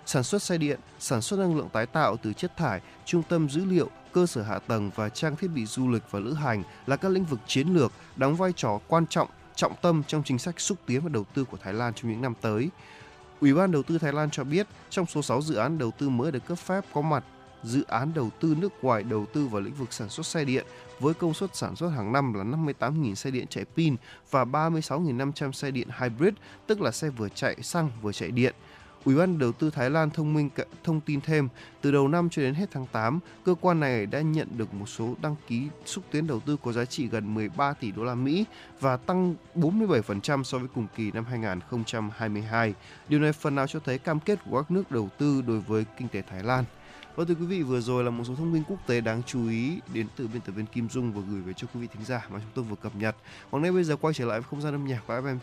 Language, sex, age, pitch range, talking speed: Vietnamese, male, 20-39, 115-155 Hz, 260 wpm